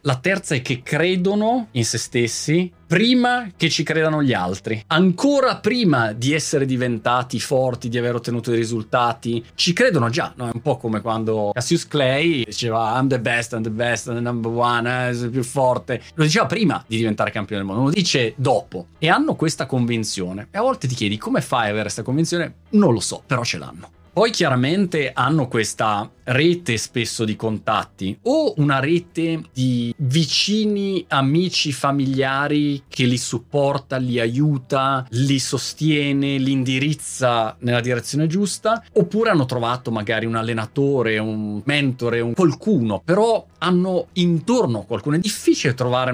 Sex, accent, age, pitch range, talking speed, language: male, native, 30-49, 115-160 Hz, 165 wpm, Italian